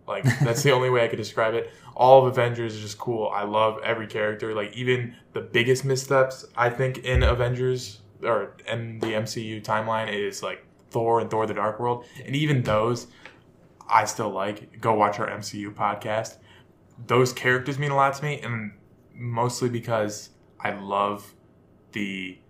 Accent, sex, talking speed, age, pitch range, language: American, male, 175 wpm, 20-39, 105-120 Hz, English